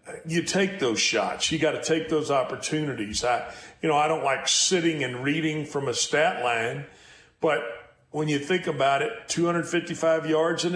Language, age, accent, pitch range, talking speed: English, 40-59, American, 140-160 Hz, 180 wpm